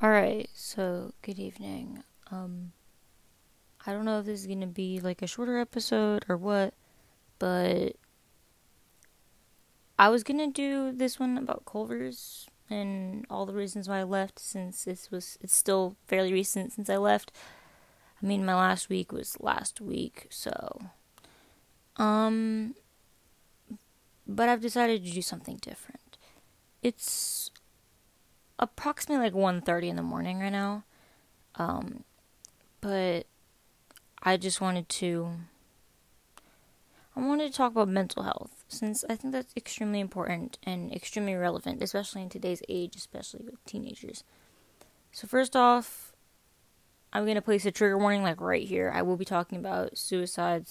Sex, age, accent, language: female, 20-39, American, English